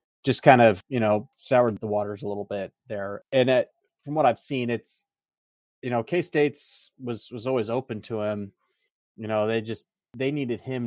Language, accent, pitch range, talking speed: English, American, 105-125 Hz, 200 wpm